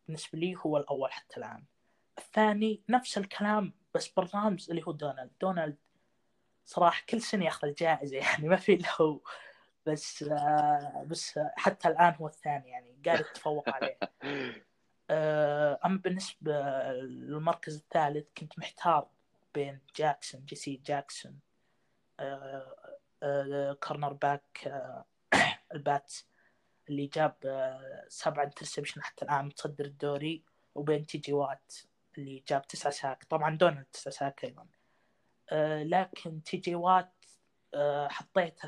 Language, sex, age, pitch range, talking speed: Arabic, female, 20-39, 140-165 Hz, 115 wpm